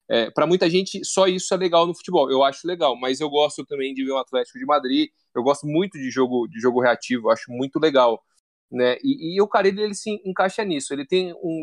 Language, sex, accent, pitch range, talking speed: Portuguese, male, Brazilian, 125-170 Hz, 245 wpm